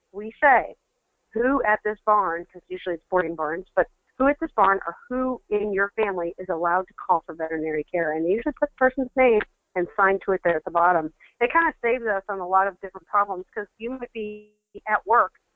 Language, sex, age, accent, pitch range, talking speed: English, female, 40-59, American, 180-215 Hz, 230 wpm